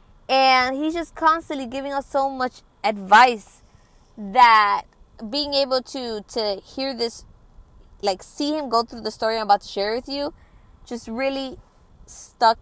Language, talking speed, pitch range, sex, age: English, 150 wpm, 205-270 Hz, female, 20-39